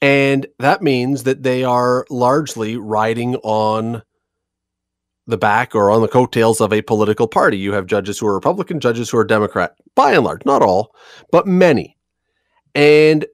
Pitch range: 110-130 Hz